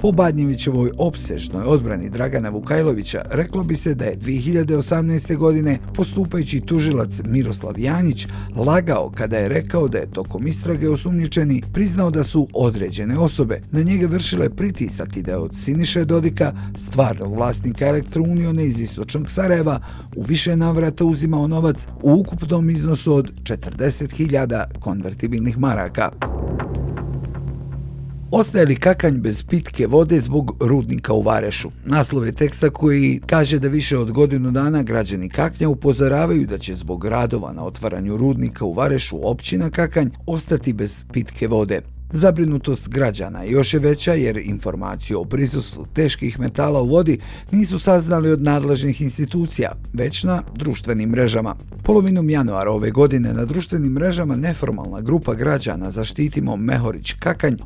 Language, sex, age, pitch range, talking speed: Croatian, male, 50-69, 115-160 Hz, 135 wpm